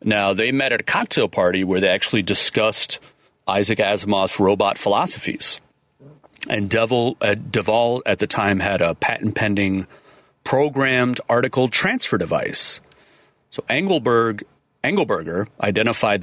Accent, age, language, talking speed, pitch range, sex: American, 40-59, English, 120 wpm, 95-120 Hz, male